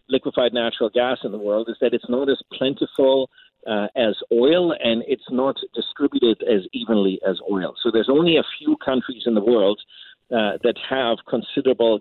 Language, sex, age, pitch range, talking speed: English, male, 50-69, 110-130 Hz, 180 wpm